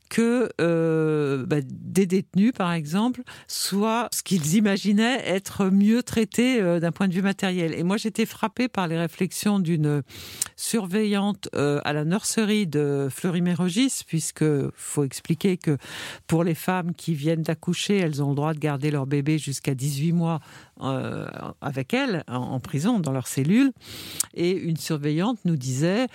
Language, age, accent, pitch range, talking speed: French, 60-79, French, 140-195 Hz, 160 wpm